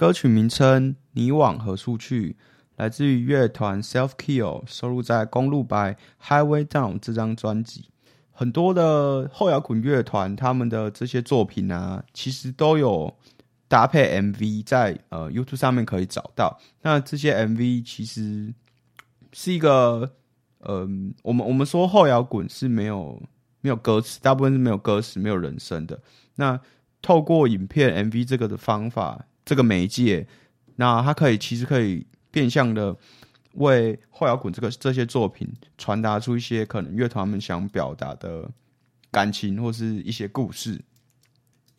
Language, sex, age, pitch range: Chinese, male, 20-39, 105-130 Hz